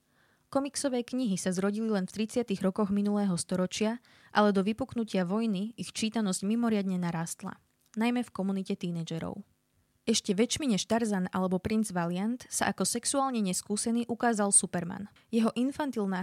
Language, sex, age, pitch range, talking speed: Slovak, female, 20-39, 185-225 Hz, 135 wpm